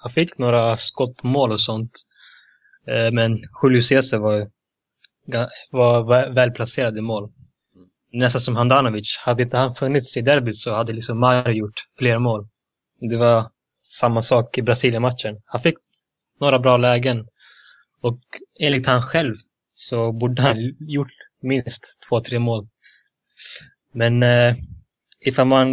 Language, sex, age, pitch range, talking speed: Swedish, male, 20-39, 115-130 Hz, 135 wpm